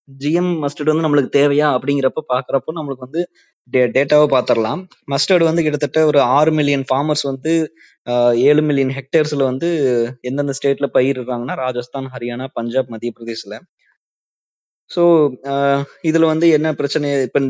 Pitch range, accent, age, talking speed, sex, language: 135-155 Hz, native, 20-39, 135 wpm, male, Tamil